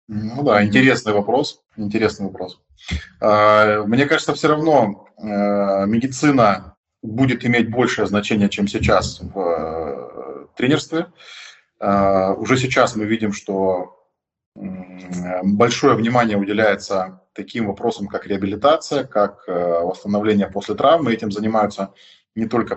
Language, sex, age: Russian, male, 20-39